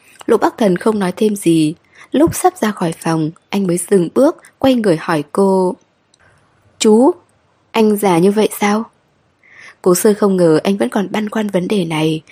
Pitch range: 175-220 Hz